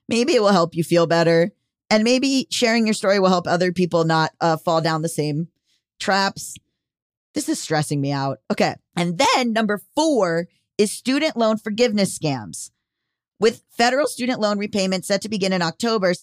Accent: American